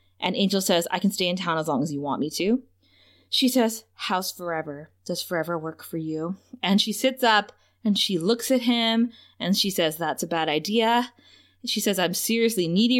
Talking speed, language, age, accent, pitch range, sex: 210 wpm, English, 20-39, American, 185-255 Hz, female